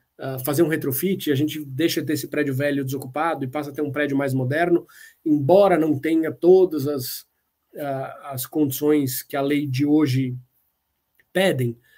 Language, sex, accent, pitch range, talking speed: Portuguese, male, Brazilian, 135-165 Hz, 170 wpm